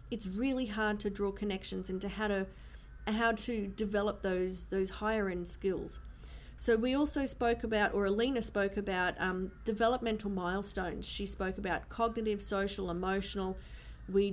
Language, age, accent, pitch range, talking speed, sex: English, 40-59, Australian, 195-235 Hz, 145 wpm, female